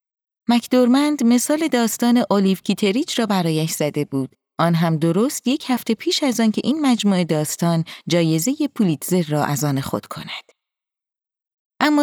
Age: 30-49